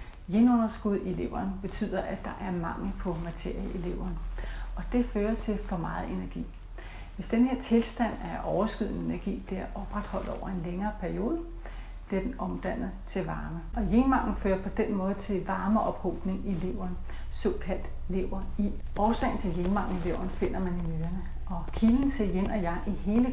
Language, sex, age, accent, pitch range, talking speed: Danish, female, 40-59, native, 180-215 Hz, 175 wpm